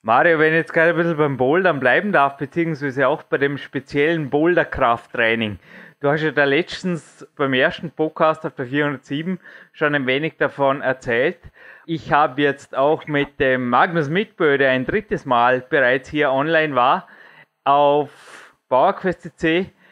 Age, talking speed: 20-39, 155 wpm